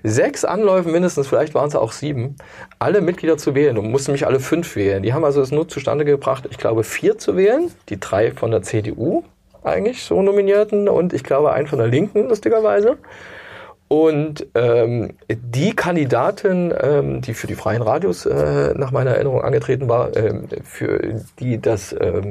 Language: German